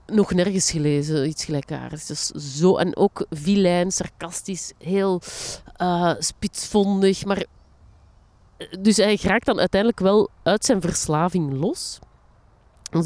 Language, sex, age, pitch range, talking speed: Dutch, female, 30-49, 165-210 Hz, 120 wpm